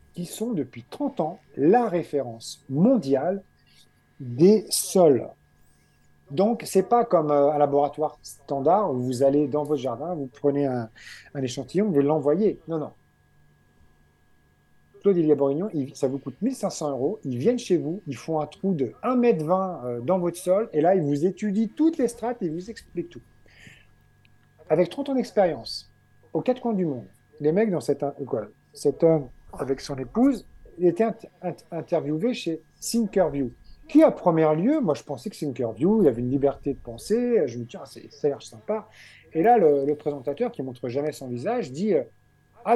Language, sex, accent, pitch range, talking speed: French, male, French, 135-190 Hz, 180 wpm